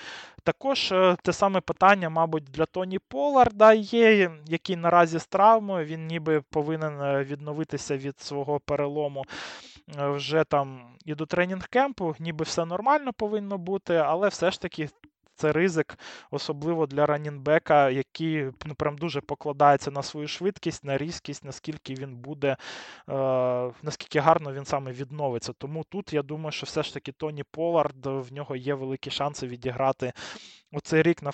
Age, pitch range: 20-39, 140-170 Hz